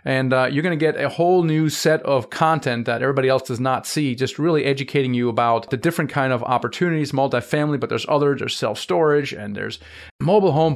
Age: 30-49